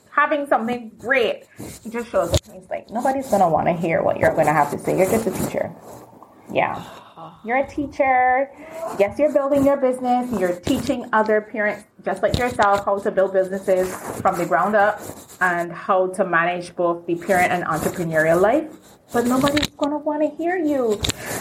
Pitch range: 180-255 Hz